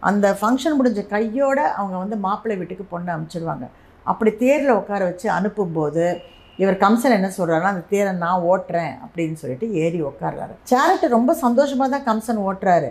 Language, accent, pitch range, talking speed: Tamil, native, 175-225 Hz, 155 wpm